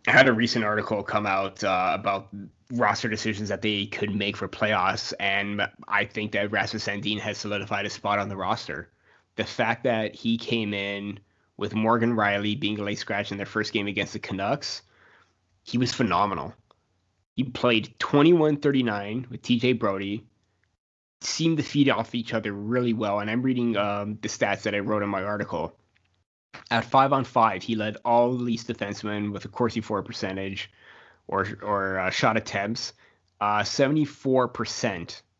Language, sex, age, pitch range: English, male, 20-39, 100-120 Hz